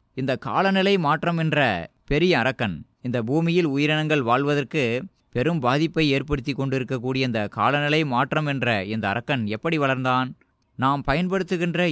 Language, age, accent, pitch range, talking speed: Tamil, 20-39, native, 120-165 Hz, 120 wpm